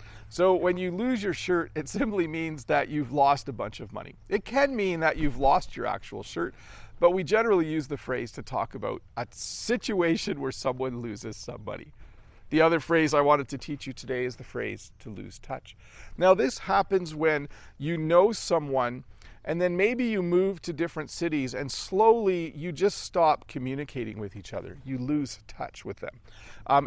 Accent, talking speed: American, 190 wpm